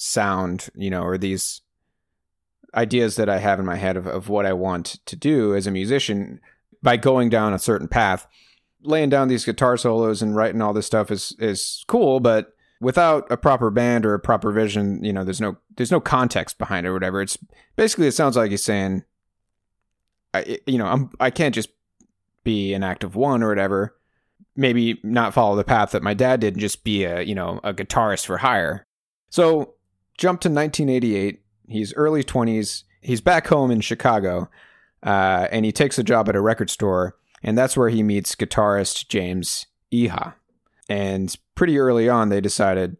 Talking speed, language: 190 wpm, English